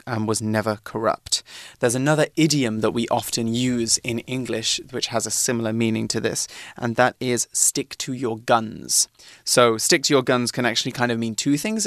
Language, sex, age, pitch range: Chinese, male, 20-39, 115-135 Hz